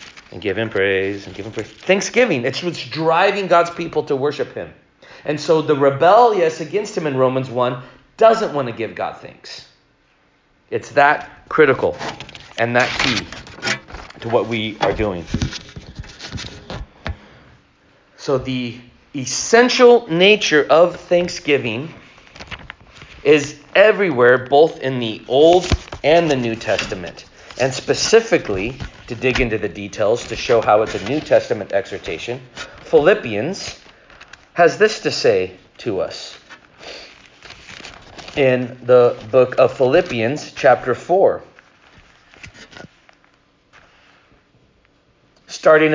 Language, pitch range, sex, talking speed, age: English, 125-165 Hz, male, 115 wpm, 40-59